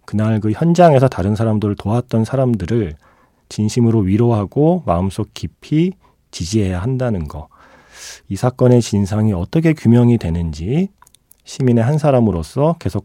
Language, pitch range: Korean, 95-130 Hz